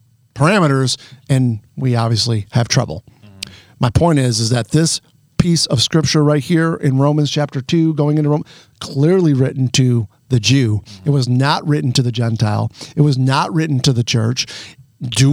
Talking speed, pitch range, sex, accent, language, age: 170 wpm, 125-160 Hz, male, American, English, 50-69